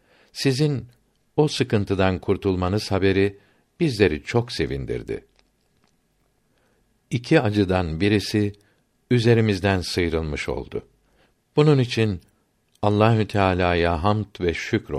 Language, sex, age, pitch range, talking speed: Turkish, male, 60-79, 90-120 Hz, 85 wpm